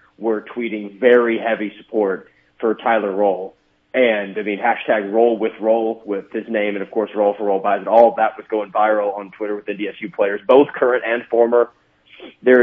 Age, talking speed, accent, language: 30-49, 215 wpm, American, English